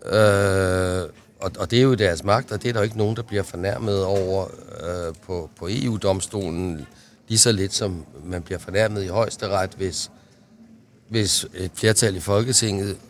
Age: 60-79